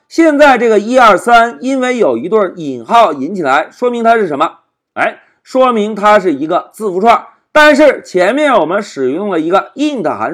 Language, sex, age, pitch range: Chinese, male, 50-69, 205-295 Hz